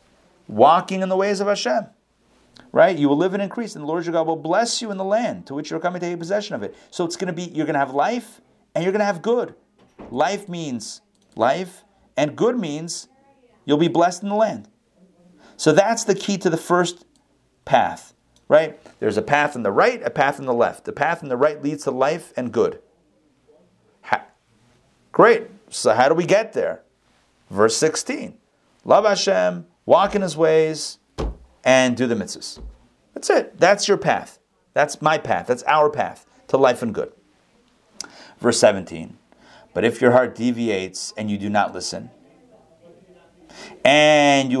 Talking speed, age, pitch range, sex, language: 185 wpm, 40-59, 125-195 Hz, male, English